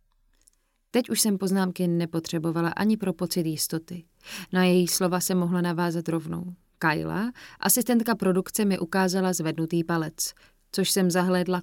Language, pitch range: Czech, 170-200 Hz